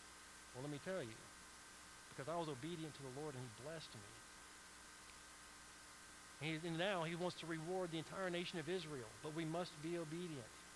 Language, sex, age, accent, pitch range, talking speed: English, male, 40-59, American, 140-180 Hz, 190 wpm